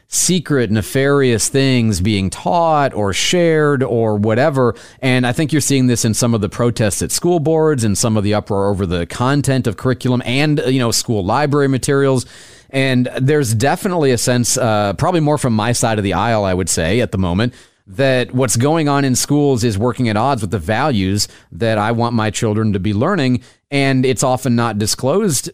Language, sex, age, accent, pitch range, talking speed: English, male, 40-59, American, 110-140 Hz, 200 wpm